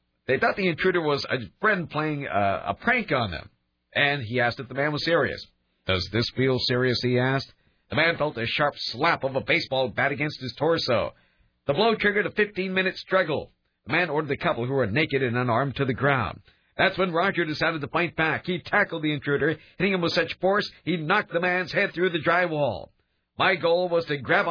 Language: English